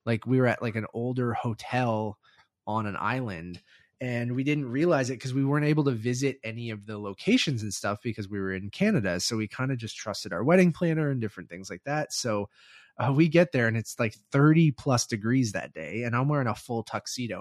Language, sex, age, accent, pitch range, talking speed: English, male, 20-39, American, 105-135 Hz, 230 wpm